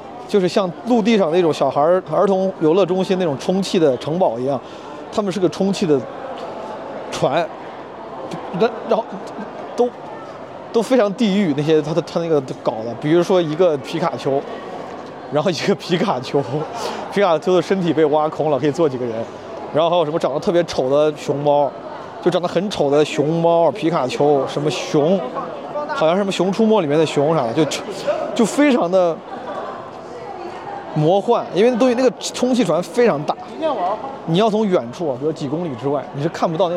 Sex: male